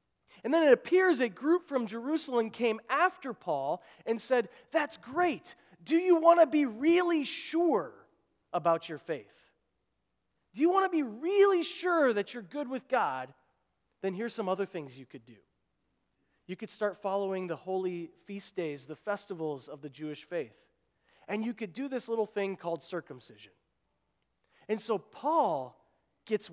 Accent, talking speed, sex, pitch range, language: American, 165 wpm, male, 175-245 Hz, English